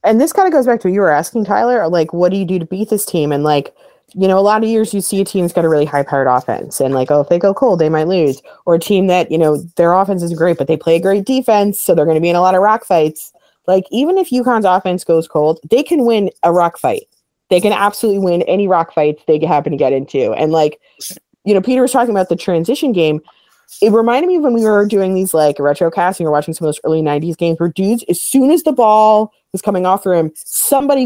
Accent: American